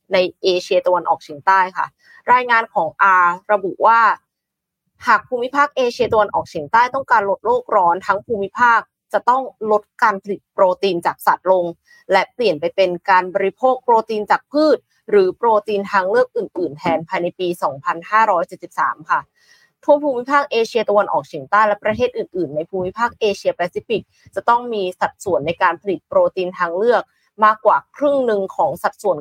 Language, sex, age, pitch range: Thai, female, 20-39, 185-255 Hz